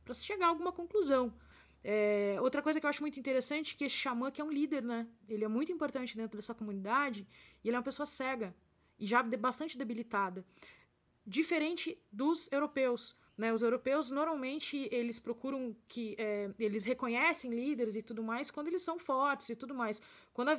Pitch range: 230-290 Hz